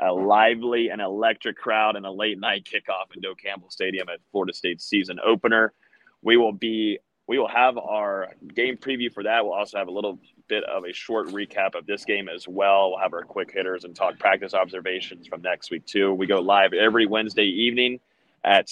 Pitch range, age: 95-115 Hz, 30-49